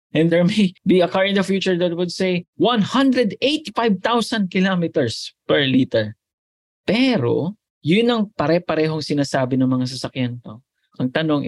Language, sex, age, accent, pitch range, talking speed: English, male, 20-39, Filipino, 120-165 Hz, 135 wpm